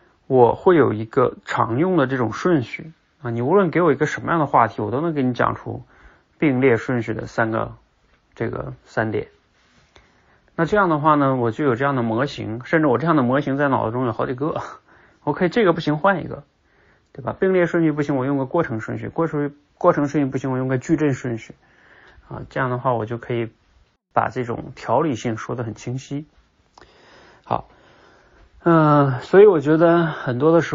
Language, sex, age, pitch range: Chinese, male, 30-49, 115-150 Hz